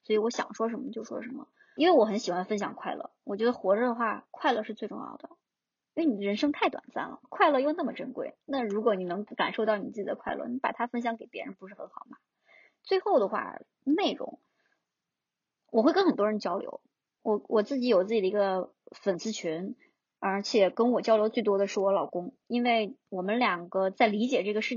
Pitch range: 205-275 Hz